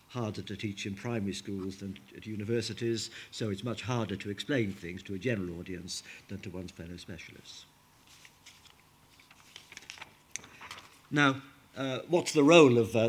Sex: male